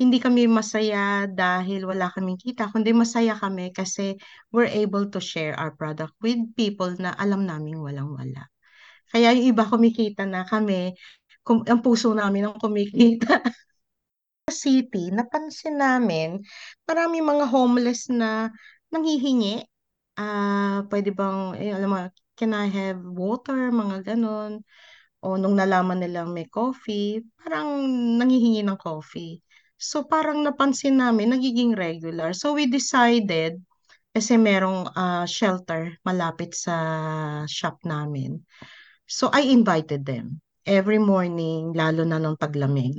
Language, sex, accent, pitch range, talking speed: Filipino, female, native, 165-235 Hz, 130 wpm